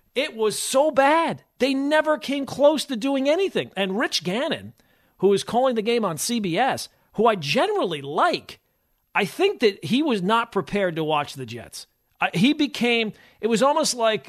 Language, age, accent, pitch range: English, 40-59, American, 175-265 Hz